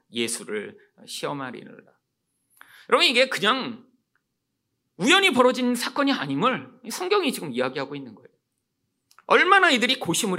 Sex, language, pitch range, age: male, Korean, 225-365 Hz, 40-59